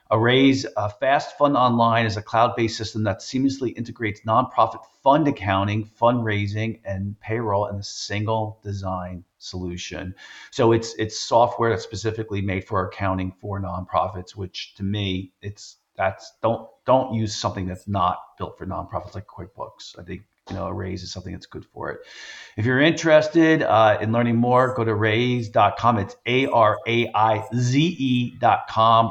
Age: 40-59